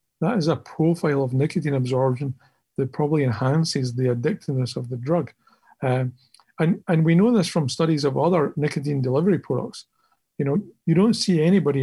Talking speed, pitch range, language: 170 wpm, 130-160 Hz, English